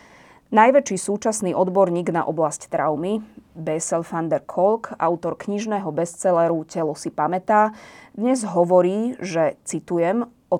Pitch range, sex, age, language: 170-210 Hz, female, 20-39, Slovak